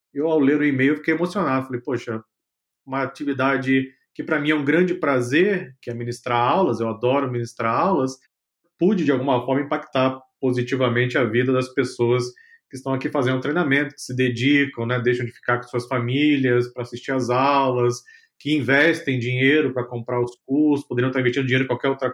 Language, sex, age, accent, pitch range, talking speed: Portuguese, male, 40-59, Brazilian, 125-150 Hz, 185 wpm